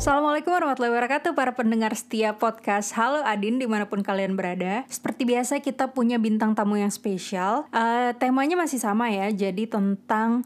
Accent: native